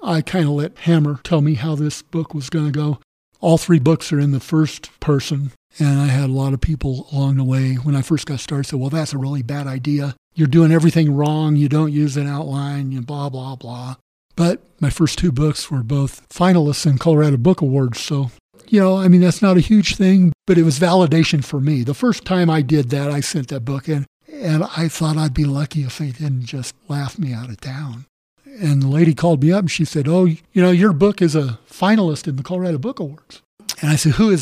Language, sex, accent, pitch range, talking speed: English, male, American, 145-185 Hz, 235 wpm